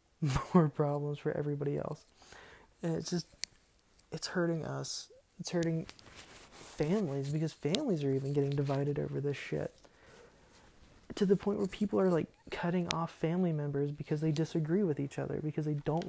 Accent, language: American, English